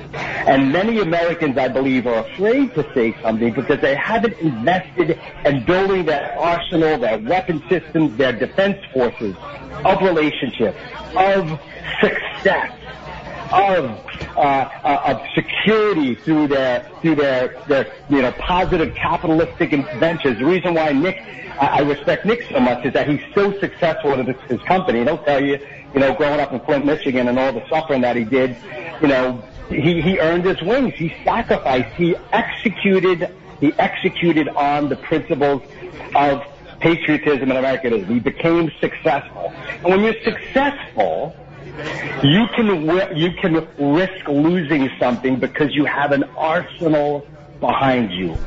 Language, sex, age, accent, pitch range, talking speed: English, male, 50-69, American, 140-180 Hz, 145 wpm